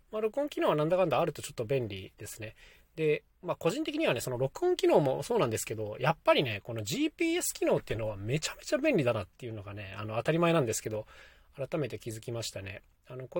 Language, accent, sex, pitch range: Japanese, native, male, 115-175 Hz